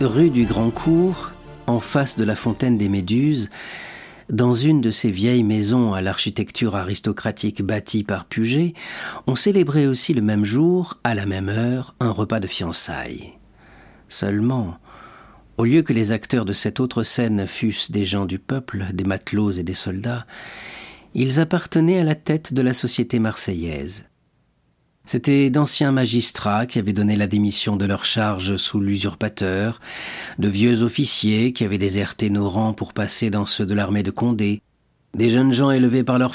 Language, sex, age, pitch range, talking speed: French, male, 40-59, 100-125 Hz, 165 wpm